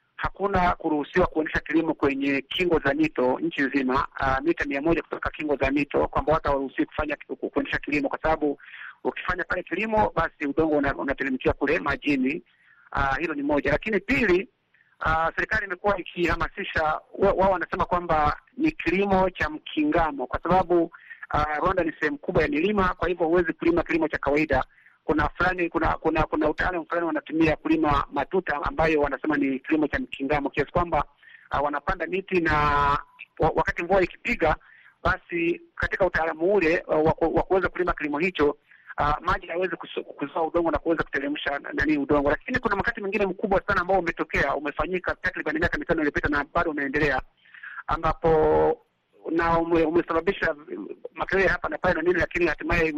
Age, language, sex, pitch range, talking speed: 50-69, Swahili, male, 150-185 Hz, 160 wpm